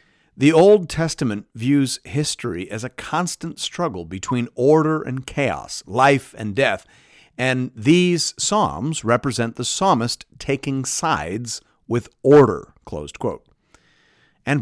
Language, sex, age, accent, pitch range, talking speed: English, male, 50-69, American, 110-150 Hz, 115 wpm